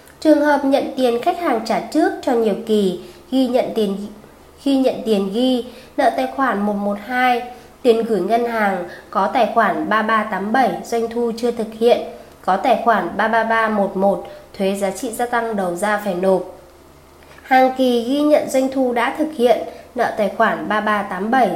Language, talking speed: Vietnamese, 170 wpm